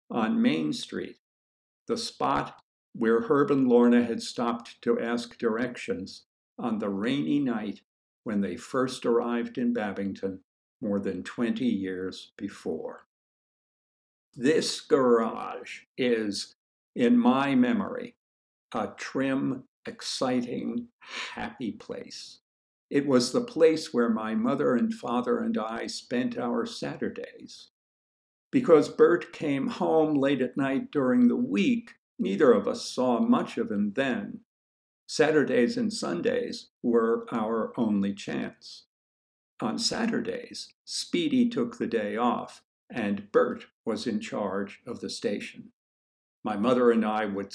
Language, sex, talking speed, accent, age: English, male, 125 wpm, American, 60-79